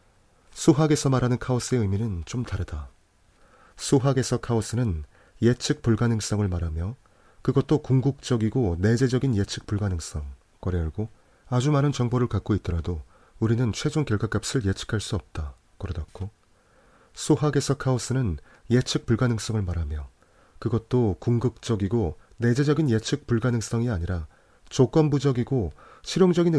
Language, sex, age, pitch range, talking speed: English, male, 30-49, 95-130 Hz, 95 wpm